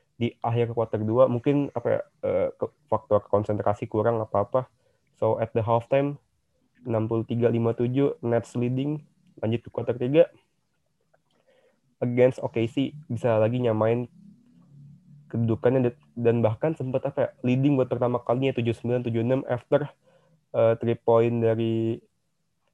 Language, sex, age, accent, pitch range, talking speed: Indonesian, male, 20-39, native, 115-145 Hz, 120 wpm